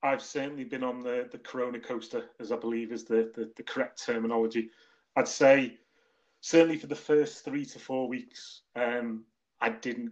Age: 30-49